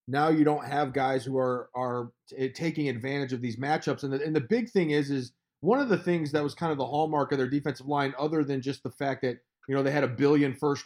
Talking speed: 270 wpm